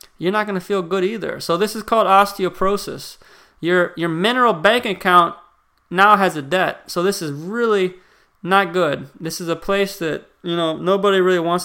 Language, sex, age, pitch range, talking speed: English, male, 20-39, 170-205 Hz, 190 wpm